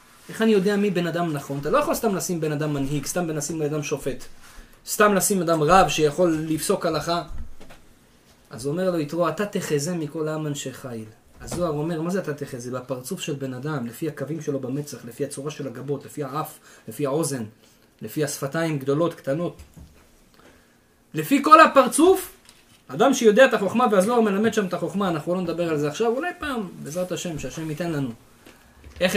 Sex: male